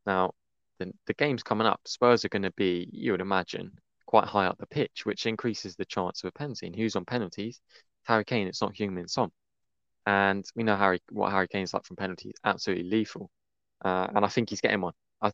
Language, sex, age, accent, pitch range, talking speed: English, male, 20-39, British, 95-115 Hz, 225 wpm